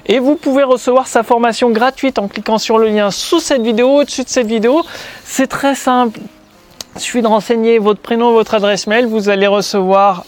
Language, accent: French, French